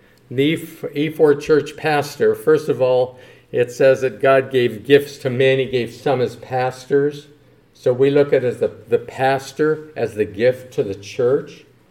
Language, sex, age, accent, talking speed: English, male, 50-69, American, 175 wpm